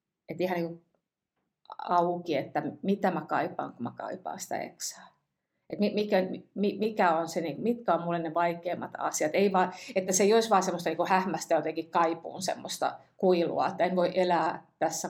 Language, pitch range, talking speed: Finnish, 165-190 Hz, 170 wpm